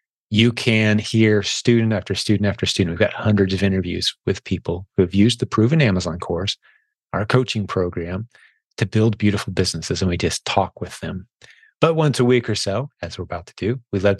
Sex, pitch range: male, 95-115 Hz